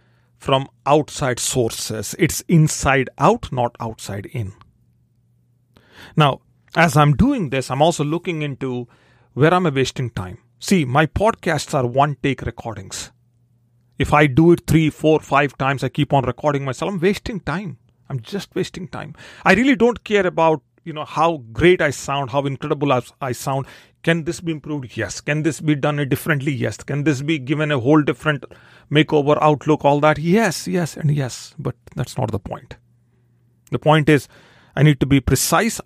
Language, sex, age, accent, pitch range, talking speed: English, male, 40-59, Indian, 125-160 Hz, 170 wpm